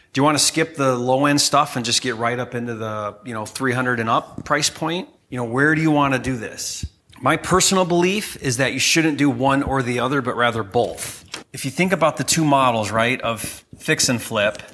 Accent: American